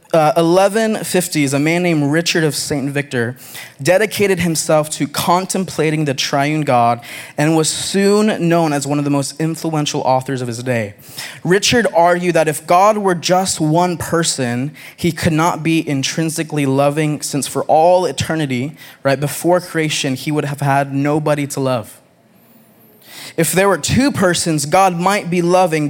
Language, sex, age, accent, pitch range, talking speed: English, male, 20-39, American, 135-170 Hz, 160 wpm